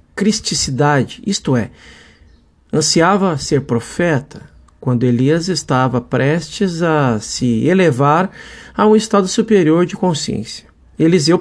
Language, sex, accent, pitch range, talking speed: Portuguese, male, Brazilian, 130-185 Hz, 110 wpm